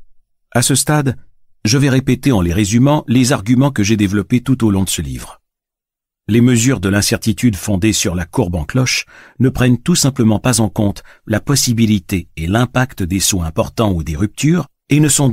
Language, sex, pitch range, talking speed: French, male, 95-130 Hz, 195 wpm